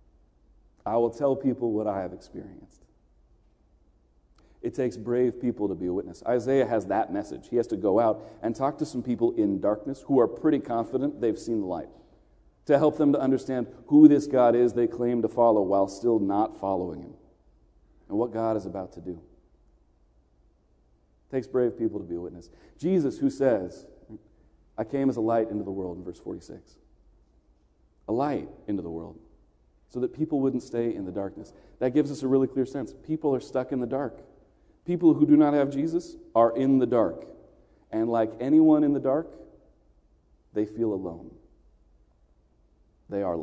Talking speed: 185 wpm